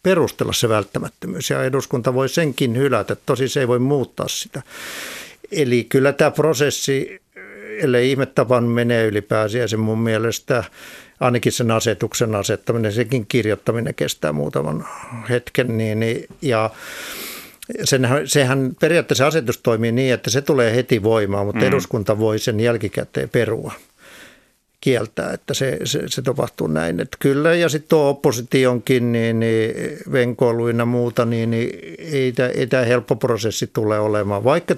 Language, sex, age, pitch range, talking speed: Finnish, male, 50-69, 110-135 Hz, 135 wpm